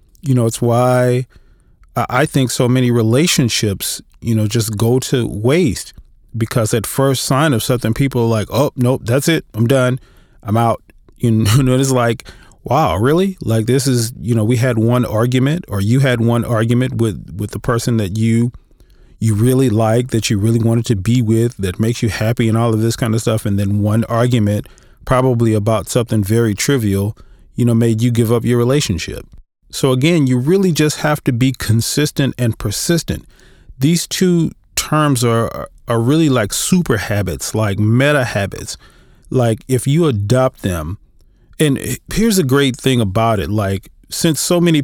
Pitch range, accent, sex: 110-130 Hz, American, male